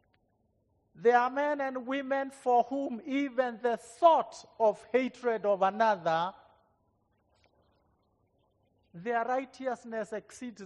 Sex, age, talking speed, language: male, 50-69, 95 wpm, English